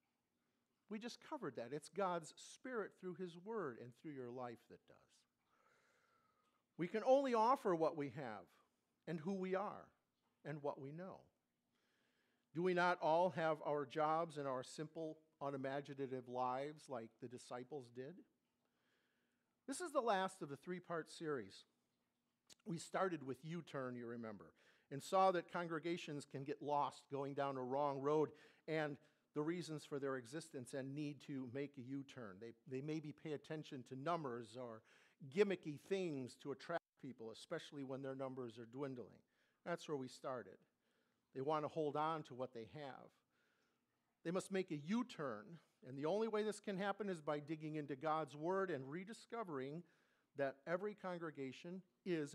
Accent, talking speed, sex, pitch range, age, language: American, 160 wpm, male, 135-175 Hz, 50-69, English